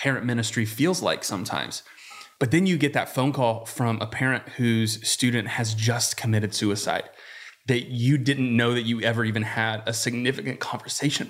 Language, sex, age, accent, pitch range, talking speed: English, male, 30-49, American, 115-140 Hz, 175 wpm